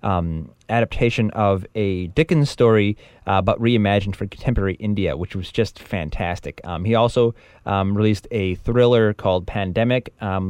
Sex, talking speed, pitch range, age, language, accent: male, 150 wpm, 90-105 Hz, 30-49, English, American